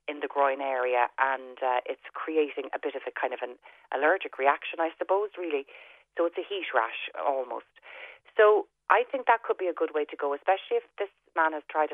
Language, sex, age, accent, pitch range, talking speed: English, female, 30-49, Irish, 135-185 Hz, 215 wpm